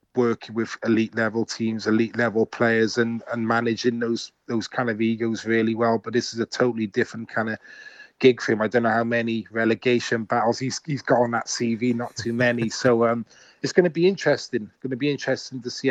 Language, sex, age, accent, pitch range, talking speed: English, male, 20-39, British, 110-120 Hz, 220 wpm